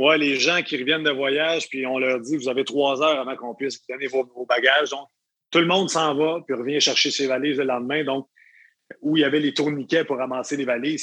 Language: French